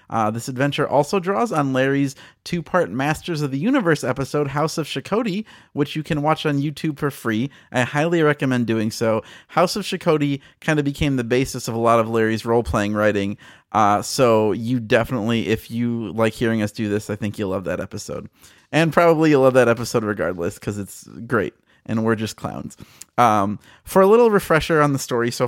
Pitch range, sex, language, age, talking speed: 115-155 Hz, male, English, 30-49, 200 wpm